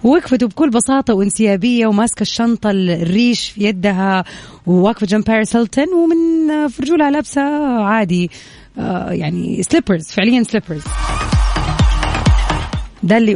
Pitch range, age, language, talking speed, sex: 175-235 Hz, 30-49, Arabic, 105 wpm, female